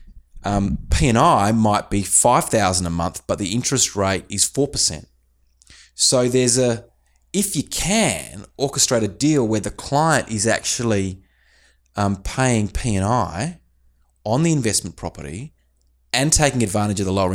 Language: English